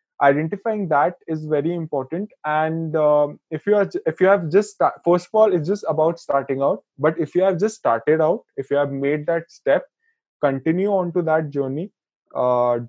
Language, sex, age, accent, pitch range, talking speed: Hindi, male, 20-39, native, 140-170 Hz, 180 wpm